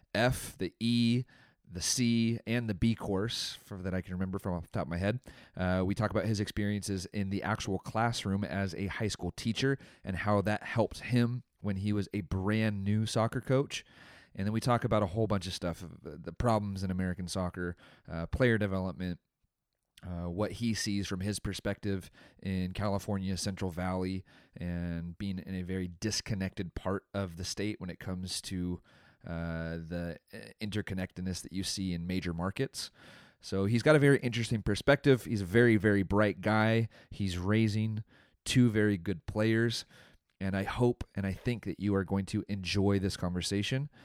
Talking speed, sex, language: 185 wpm, male, English